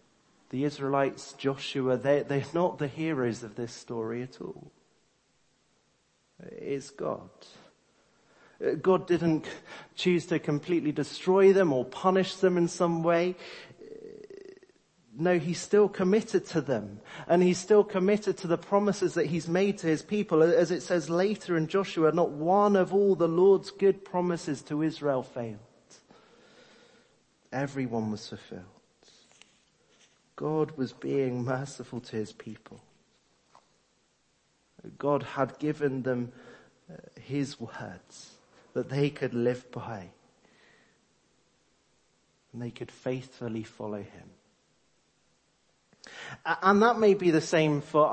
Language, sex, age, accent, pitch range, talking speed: English, male, 40-59, British, 130-185 Hz, 125 wpm